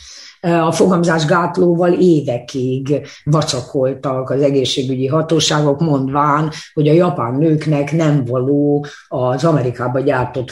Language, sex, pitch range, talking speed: Hungarian, female, 140-170 Hz, 95 wpm